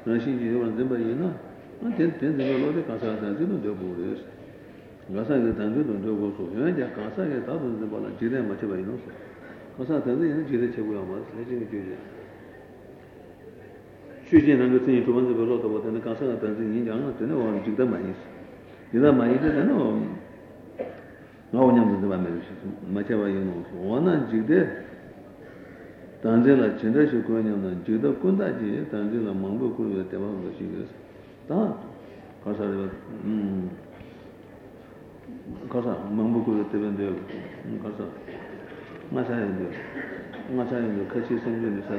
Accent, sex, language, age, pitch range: Indian, male, Italian, 60-79, 100-120 Hz